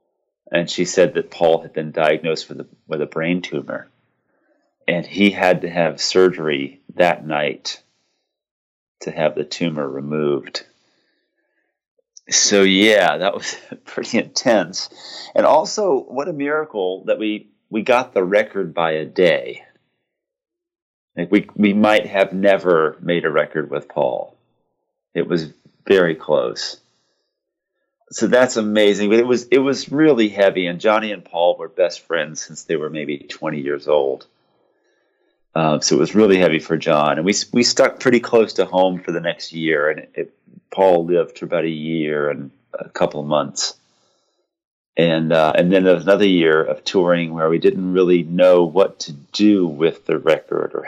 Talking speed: 165 wpm